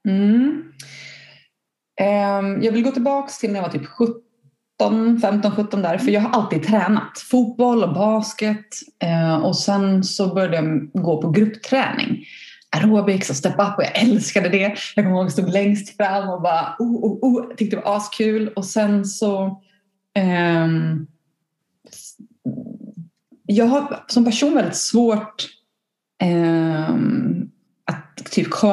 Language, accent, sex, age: Swedish, native, female, 30-49